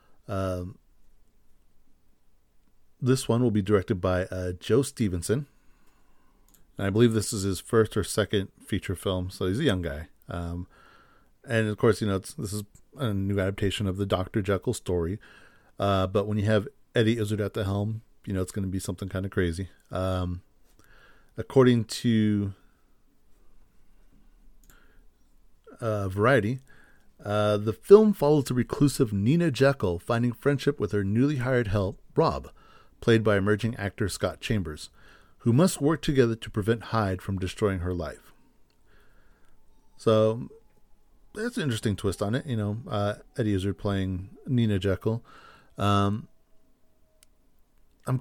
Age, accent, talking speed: 40-59, American, 145 wpm